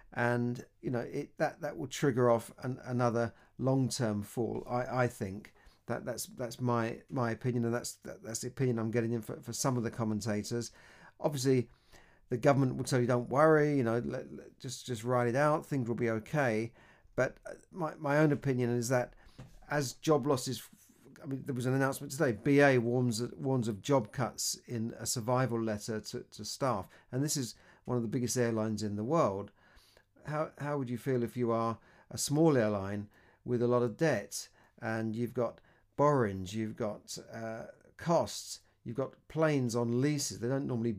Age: 40-59